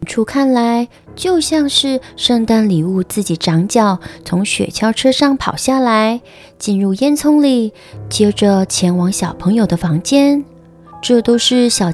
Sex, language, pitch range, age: female, Chinese, 190-260 Hz, 20-39